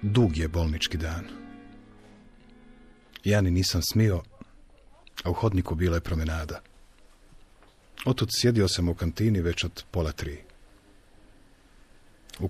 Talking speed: 115 wpm